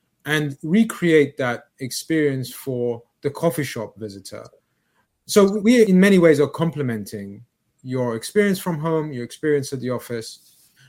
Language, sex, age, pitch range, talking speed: English, male, 30-49, 125-165 Hz, 140 wpm